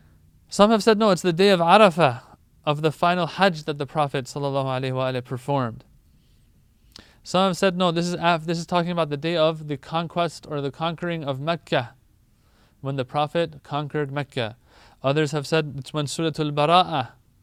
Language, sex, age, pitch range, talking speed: English, male, 30-49, 130-170 Hz, 175 wpm